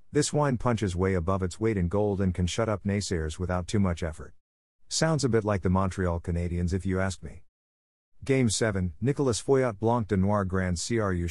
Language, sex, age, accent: English, male, 50-69, American